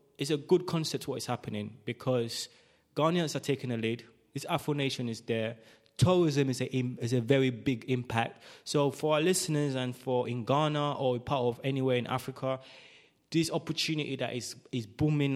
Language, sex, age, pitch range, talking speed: English, male, 20-39, 125-145 Hz, 175 wpm